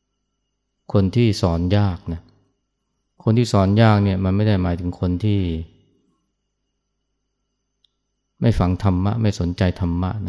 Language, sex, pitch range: Thai, male, 95-105 Hz